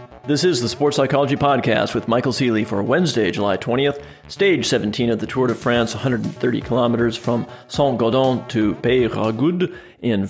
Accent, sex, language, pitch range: American, male, English, 110-130 Hz